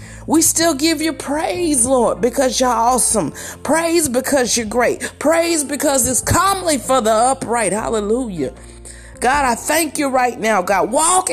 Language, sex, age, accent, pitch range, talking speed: English, female, 30-49, American, 240-320 Hz, 155 wpm